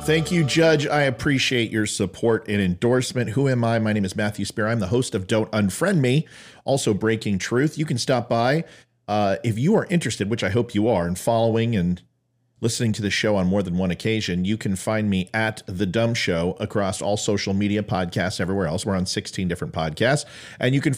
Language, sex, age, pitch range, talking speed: English, male, 40-59, 95-130 Hz, 215 wpm